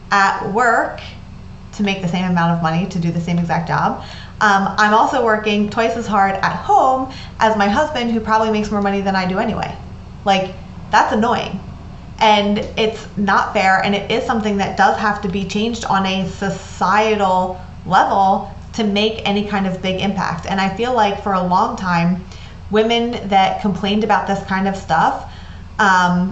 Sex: female